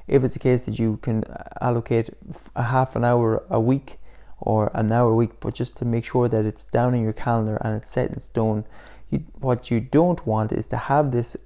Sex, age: male, 20-39